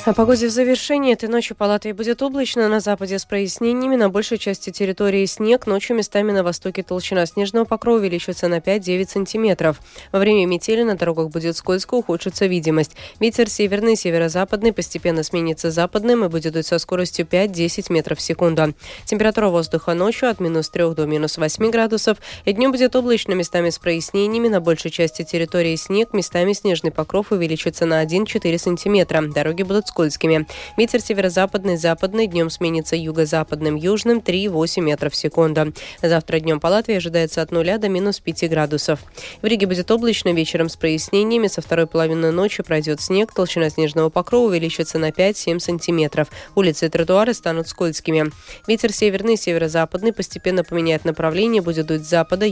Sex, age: female, 20-39